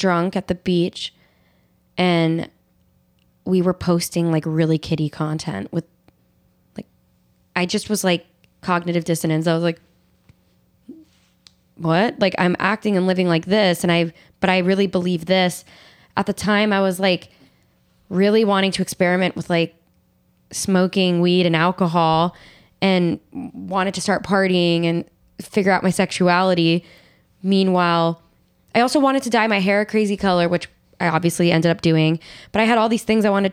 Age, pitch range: 10-29, 165-195 Hz